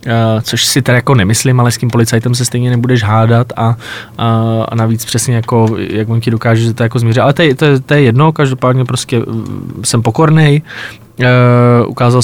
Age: 20-39